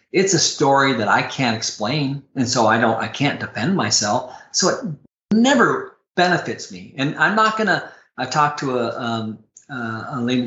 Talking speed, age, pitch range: 195 wpm, 40-59, 115-150 Hz